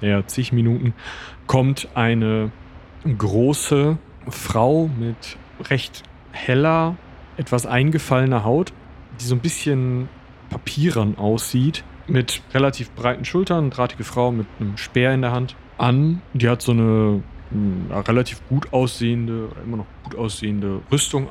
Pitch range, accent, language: 105-130 Hz, German, German